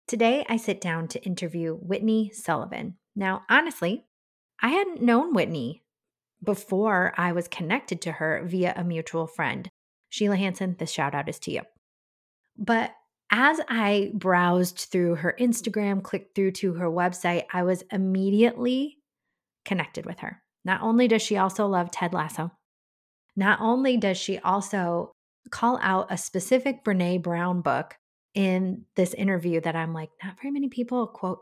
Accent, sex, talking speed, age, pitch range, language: American, female, 155 wpm, 30-49, 180-235 Hz, English